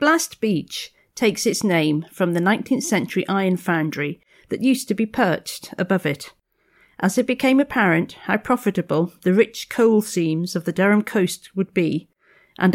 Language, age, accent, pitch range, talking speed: English, 50-69, British, 170-215 Hz, 165 wpm